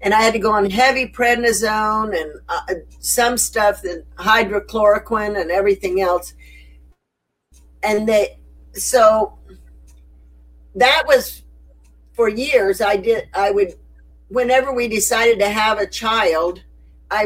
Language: English